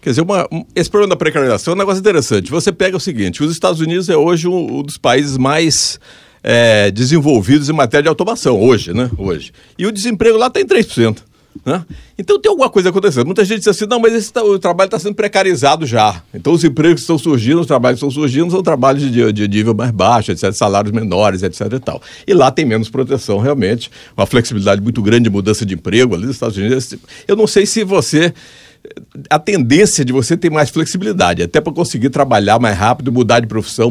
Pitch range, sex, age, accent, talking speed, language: 115-165 Hz, male, 50-69, Brazilian, 225 wpm, Portuguese